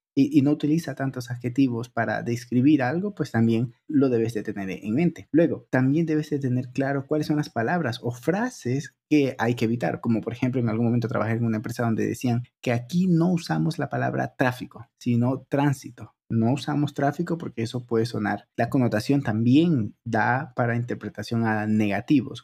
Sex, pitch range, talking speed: male, 115-140 Hz, 180 wpm